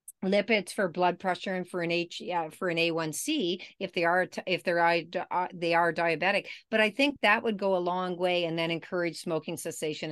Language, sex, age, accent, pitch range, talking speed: English, female, 50-69, American, 175-235 Hz, 210 wpm